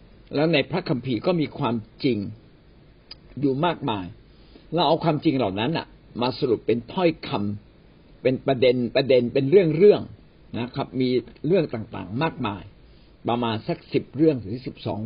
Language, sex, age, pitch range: Thai, male, 60-79, 115-165 Hz